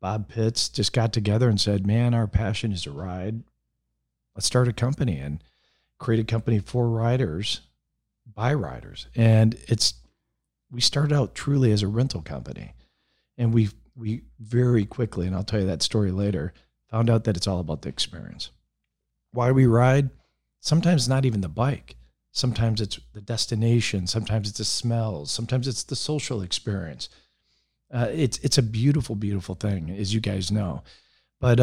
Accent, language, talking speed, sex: American, English, 165 wpm, male